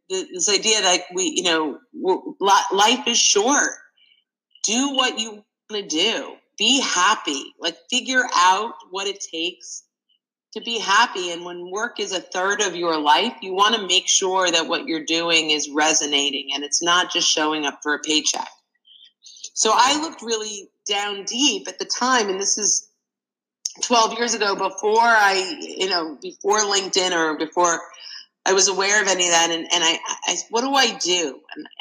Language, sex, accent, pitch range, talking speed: English, female, American, 170-225 Hz, 175 wpm